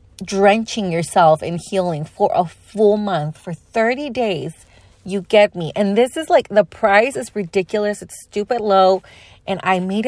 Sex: female